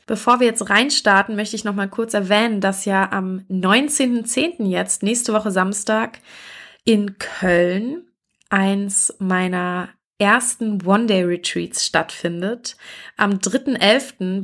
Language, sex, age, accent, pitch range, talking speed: German, female, 20-39, German, 185-220 Hz, 110 wpm